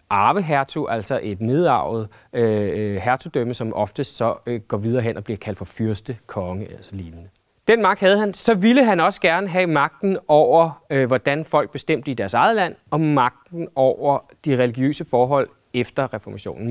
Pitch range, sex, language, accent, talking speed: 120-175 Hz, male, Danish, native, 170 wpm